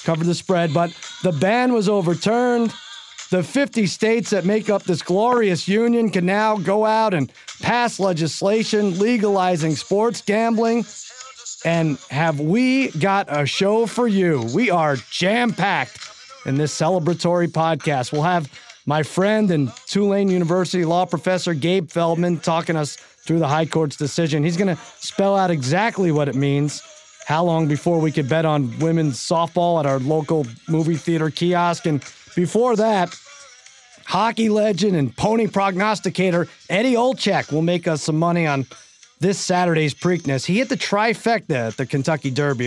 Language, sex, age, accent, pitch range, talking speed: English, male, 30-49, American, 150-200 Hz, 155 wpm